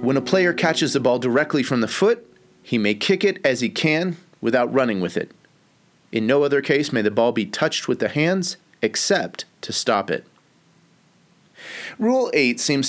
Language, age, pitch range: English, 30-49, 115-160 Hz